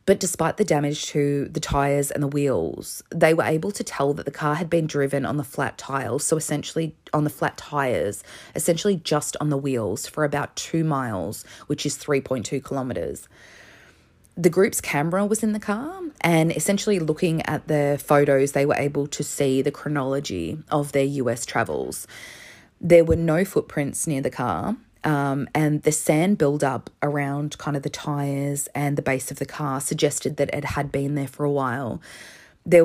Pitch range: 140-165 Hz